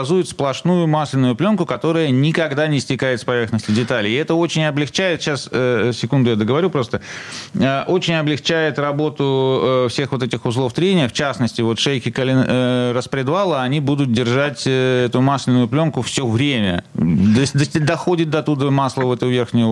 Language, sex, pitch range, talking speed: Russian, male, 115-145 Hz, 145 wpm